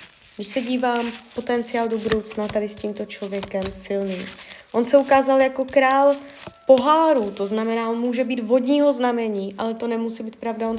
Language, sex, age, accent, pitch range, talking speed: Czech, female, 20-39, native, 215-270 Hz, 165 wpm